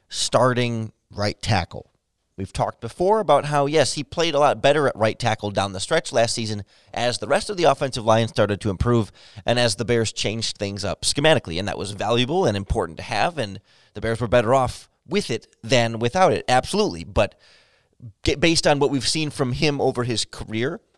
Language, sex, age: English, male, 30-49